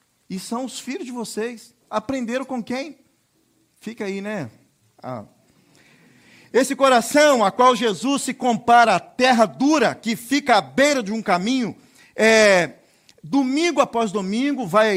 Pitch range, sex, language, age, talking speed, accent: 205-245 Hz, male, Portuguese, 40-59, 140 wpm, Brazilian